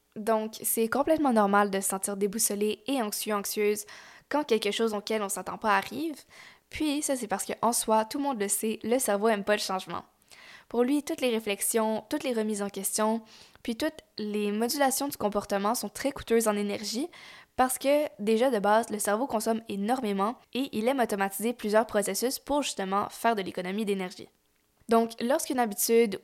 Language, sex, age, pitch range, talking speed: French, female, 10-29, 205-240 Hz, 190 wpm